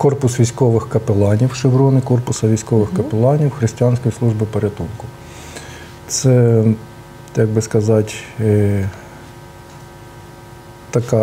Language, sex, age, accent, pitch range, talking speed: Russian, male, 50-69, native, 110-130 Hz, 80 wpm